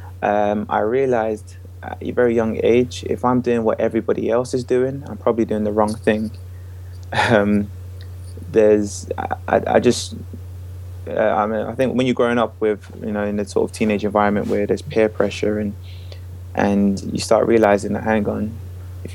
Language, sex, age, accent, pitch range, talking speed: English, male, 20-39, British, 90-110 Hz, 180 wpm